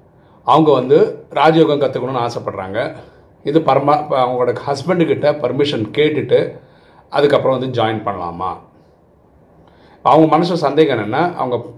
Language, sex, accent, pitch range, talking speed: Tamil, male, native, 110-155 Hz, 95 wpm